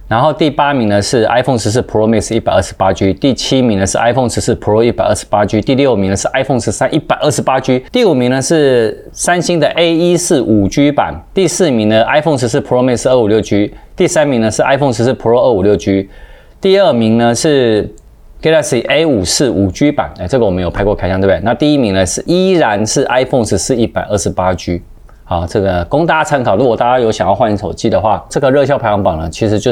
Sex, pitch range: male, 100-135 Hz